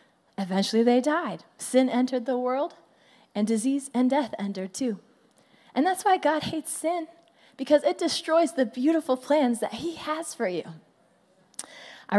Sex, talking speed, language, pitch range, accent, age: female, 155 wpm, English, 220-285 Hz, American, 20-39